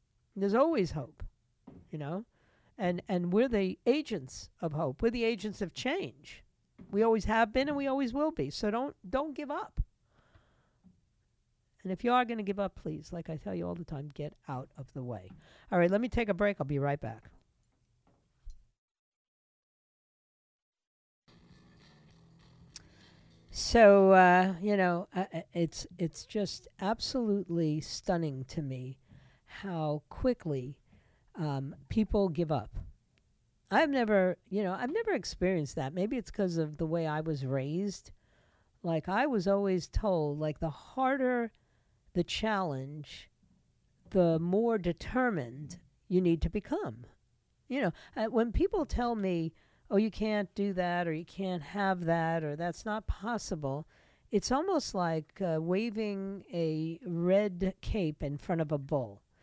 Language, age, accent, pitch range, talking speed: English, 50-69, American, 150-210 Hz, 150 wpm